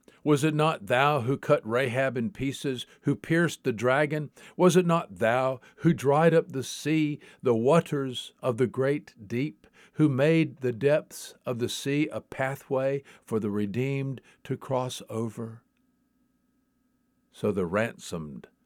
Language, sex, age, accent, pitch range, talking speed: English, male, 60-79, American, 120-180 Hz, 150 wpm